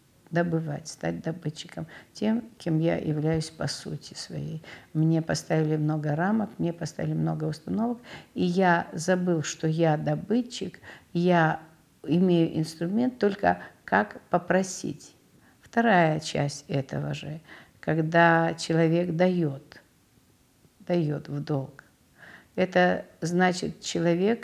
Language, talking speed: Russian, 105 wpm